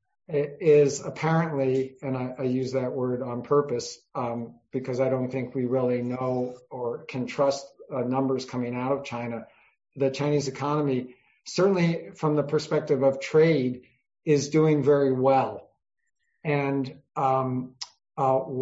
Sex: male